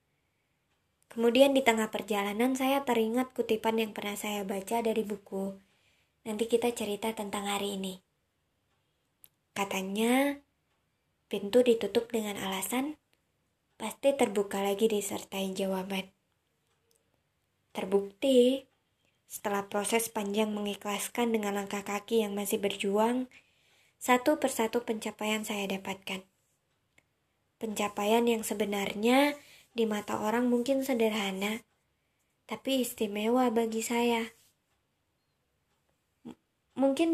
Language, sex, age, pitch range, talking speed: Indonesian, male, 20-39, 200-240 Hz, 95 wpm